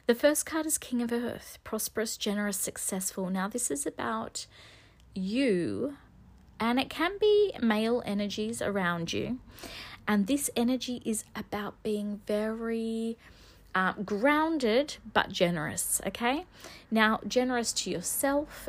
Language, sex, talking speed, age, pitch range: English, female, 125 wpm, 30-49, 180-235 Hz